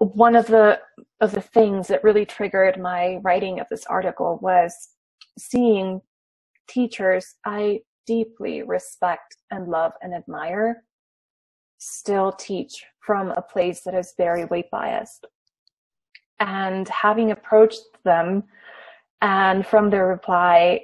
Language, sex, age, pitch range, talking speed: English, female, 20-39, 195-235 Hz, 120 wpm